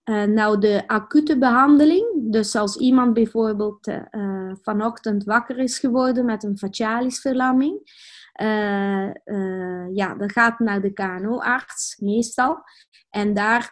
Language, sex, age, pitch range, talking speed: Dutch, female, 20-39, 200-230 Hz, 130 wpm